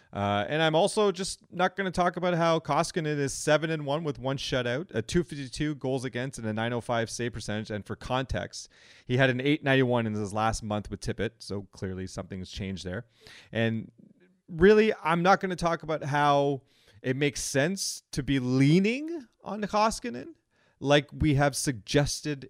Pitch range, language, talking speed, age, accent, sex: 115-160 Hz, English, 175 wpm, 30-49, American, male